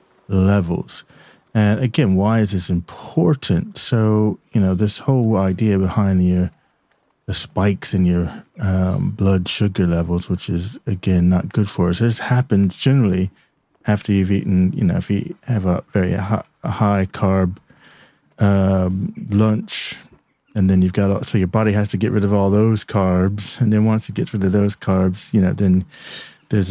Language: English